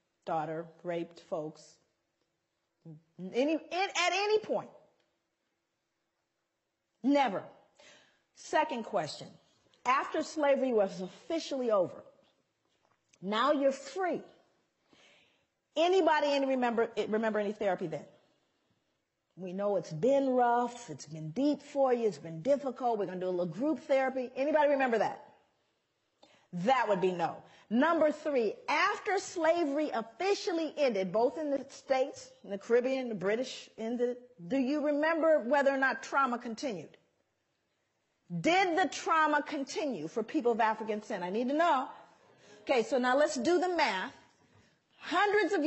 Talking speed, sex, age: 130 wpm, female, 40-59